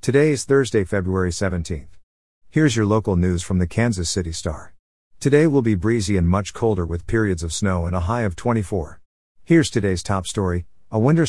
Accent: American